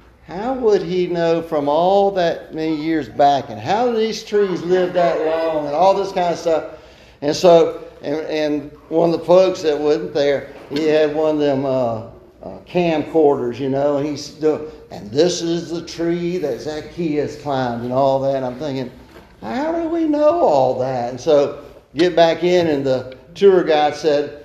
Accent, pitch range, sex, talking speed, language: American, 140-180 Hz, male, 190 wpm, English